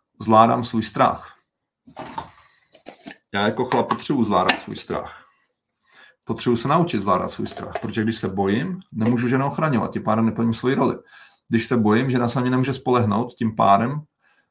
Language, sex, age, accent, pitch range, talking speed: Czech, male, 40-59, native, 120-150 Hz, 155 wpm